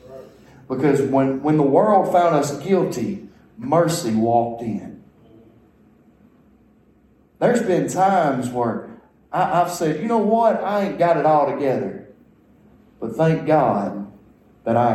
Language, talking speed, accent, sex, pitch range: English, 125 wpm, American, male, 110-140 Hz